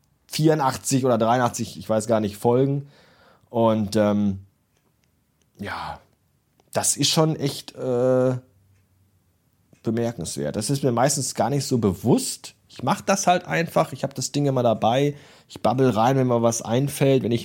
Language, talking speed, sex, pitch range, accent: German, 155 wpm, male, 110-165 Hz, German